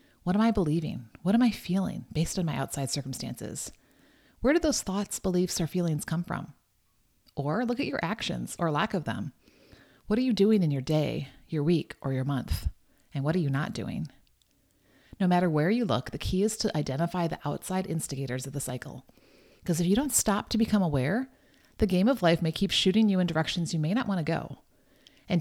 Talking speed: 215 wpm